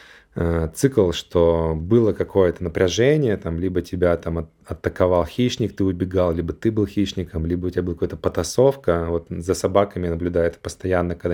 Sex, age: male, 20-39